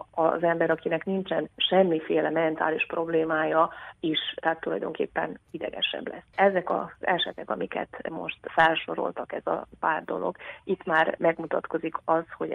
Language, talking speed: Hungarian, 130 wpm